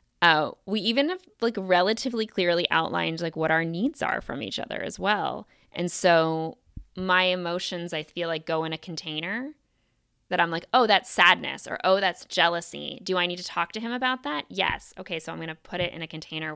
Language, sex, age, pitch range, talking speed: English, female, 20-39, 155-195 Hz, 210 wpm